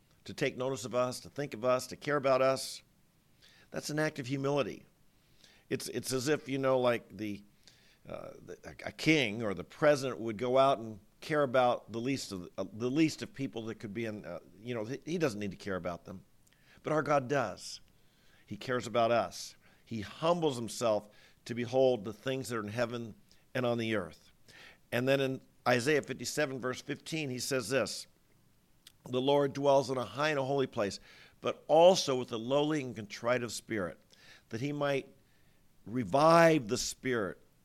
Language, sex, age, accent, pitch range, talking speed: English, male, 50-69, American, 110-140 Hz, 190 wpm